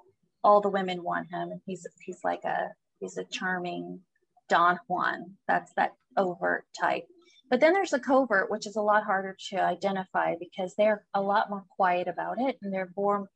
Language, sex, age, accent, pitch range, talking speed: English, female, 30-49, American, 185-220 Hz, 190 wpm